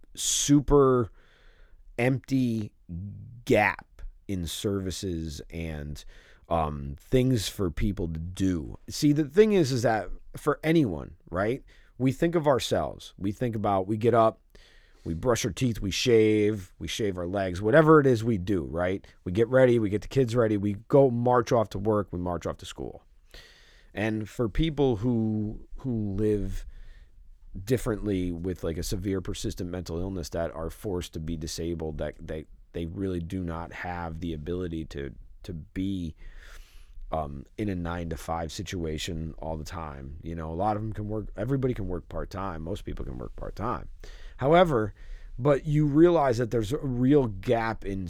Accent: American